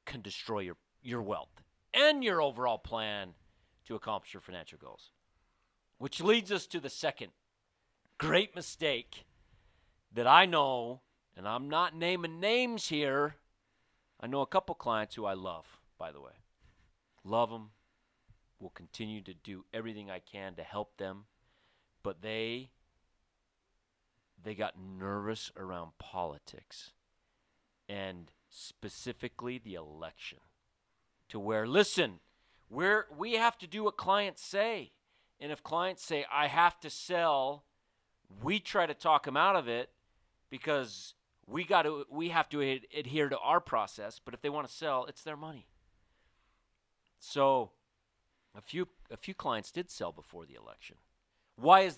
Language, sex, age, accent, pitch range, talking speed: English, male, 40-59, American, 100-160 Hz, 145 wpm